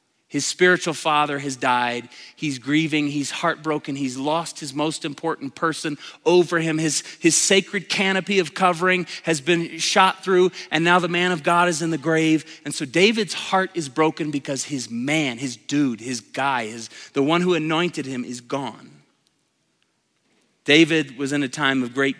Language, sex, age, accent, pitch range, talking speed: English, male, 30-49, American, 145-190 Hz, 175 wpm